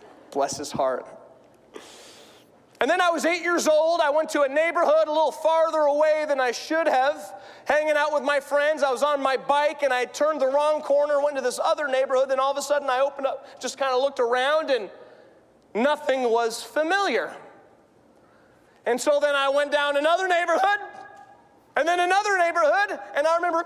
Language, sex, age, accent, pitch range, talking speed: English, male, 30-49, American, 270-350 Hz, 195 wpm